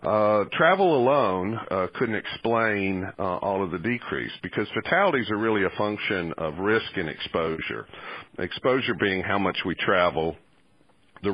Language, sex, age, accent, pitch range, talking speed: English, male, 50-69, American, 80-110 Hz, 150 wpm